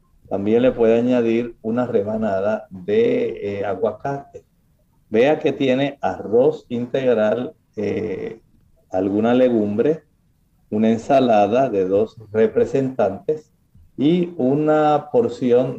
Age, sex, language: 50-69, male, Spanish